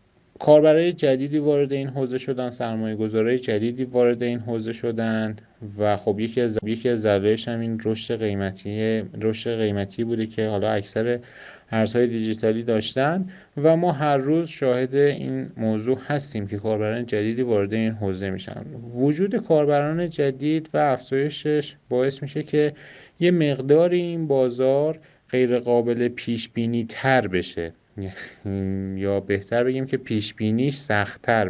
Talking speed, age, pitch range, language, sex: 135 wpm, 30-49, 105-145 Hz, Persian, male